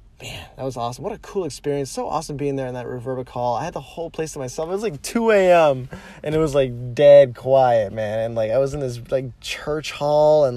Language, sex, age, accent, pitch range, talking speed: English, male, 20-39, American, 110-140 Hz, 255 wpm